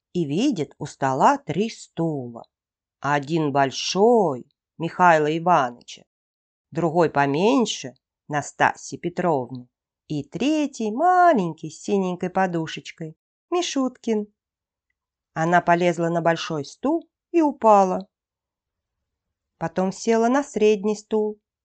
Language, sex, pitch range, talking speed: Russian, female, 145-215 Hz, 90 wpm